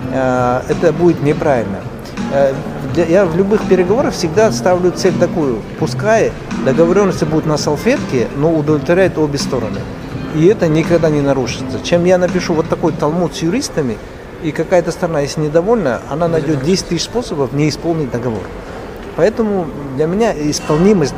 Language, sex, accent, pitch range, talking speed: Russian, male, native, 140-185 Hz, 140 wpm